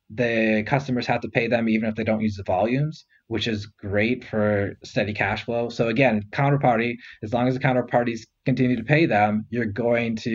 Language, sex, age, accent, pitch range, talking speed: English, male, 20-39, American, 110-130 Hz, 205 wpm